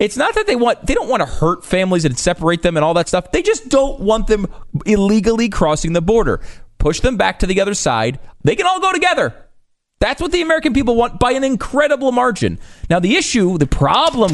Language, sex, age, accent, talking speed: English, male, 30-49, American, 225 wpm